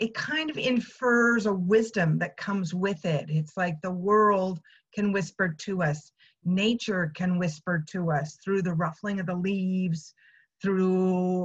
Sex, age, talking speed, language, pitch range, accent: female, 40-59, 155 wpm, English, 175-225 Hz, American